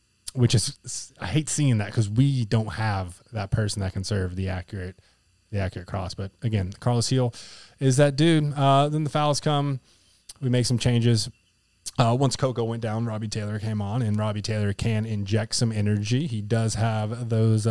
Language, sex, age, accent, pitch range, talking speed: English, male, 20-39, American, 100-125 Hz, 190 wpm